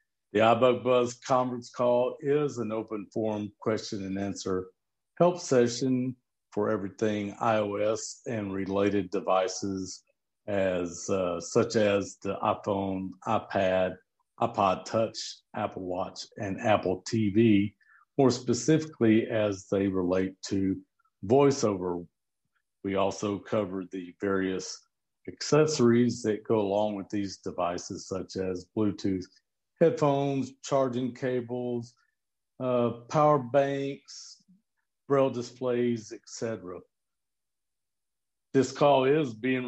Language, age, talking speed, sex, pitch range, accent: English, 50-69, 105 wpm, male, 95-125 Hz, American